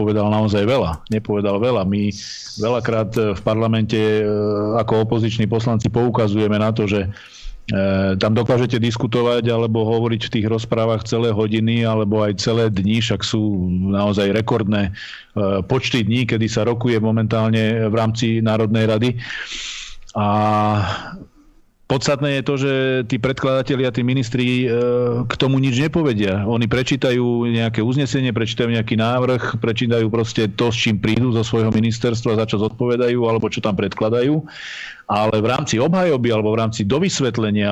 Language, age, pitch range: Slovak, 40-59, 110-125 Hz